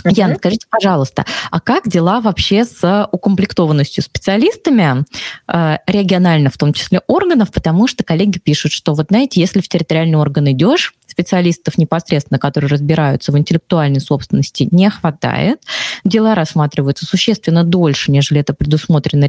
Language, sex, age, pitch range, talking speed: Russian, female, 20-39, 150-200 Hz, 135 wpm